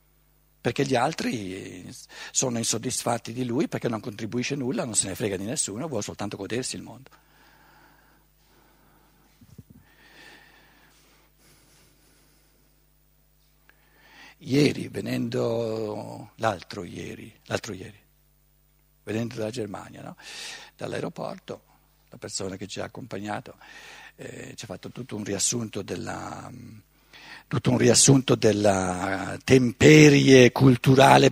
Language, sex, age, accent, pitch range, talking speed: Italian, male, 60-79, native, 115-170 Hz, 100 wpm